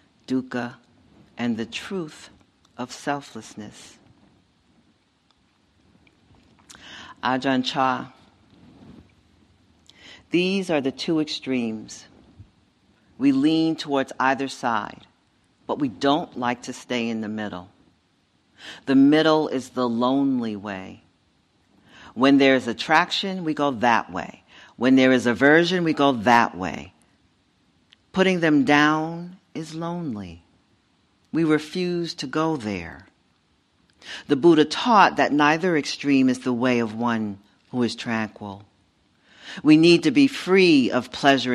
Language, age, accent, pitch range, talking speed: English, 50-69, American, 105-155 Hz, 115 wpm